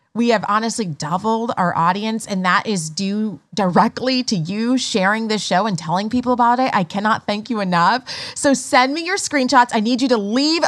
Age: 30-49